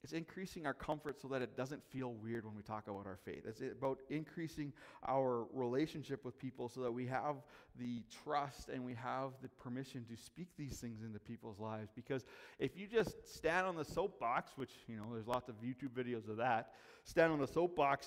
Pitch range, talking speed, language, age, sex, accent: 125-160 Hz, 210 wpm, English, 30-49, male, American